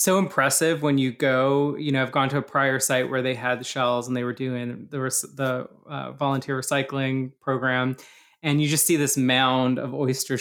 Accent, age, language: American, 20-39, English